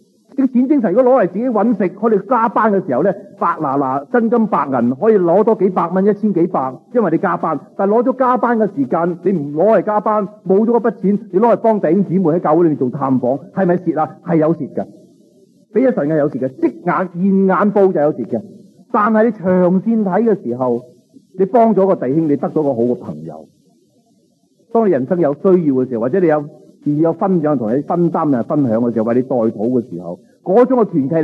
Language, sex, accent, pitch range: Chinese, male, native, 140-210 Hz